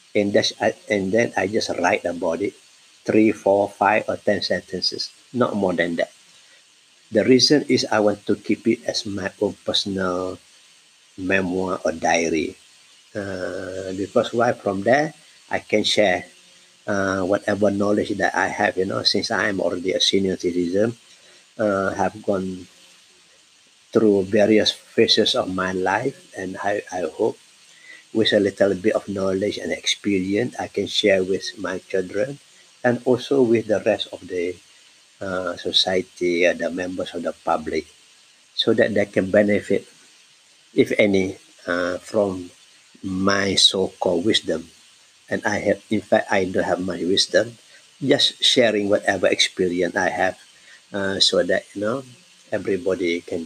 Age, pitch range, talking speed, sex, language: 50-69, 95-105 Hz, 155 wpm, male, English